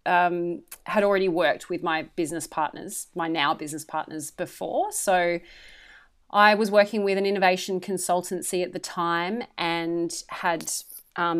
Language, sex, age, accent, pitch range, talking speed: English, female, 30-49, Australian, 165-190 Hz, 145 wpm